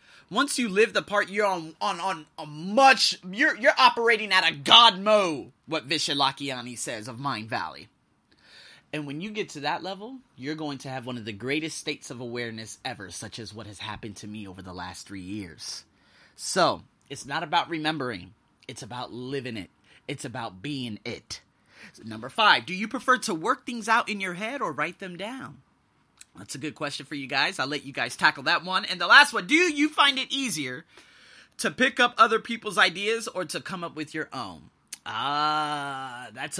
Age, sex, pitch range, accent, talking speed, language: 30-49, male, 130-195 Hz, American, 200 wpm, English